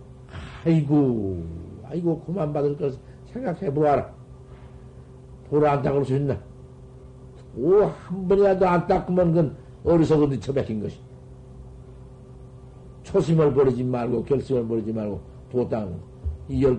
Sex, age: male, 50-69